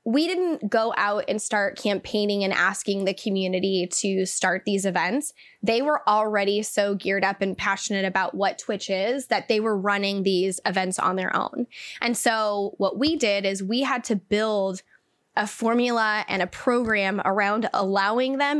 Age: 10-29